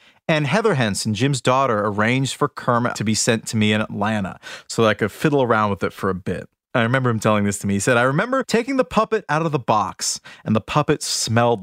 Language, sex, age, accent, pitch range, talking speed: English, male, 30-49, American, 110-170 Hz, 250 wpm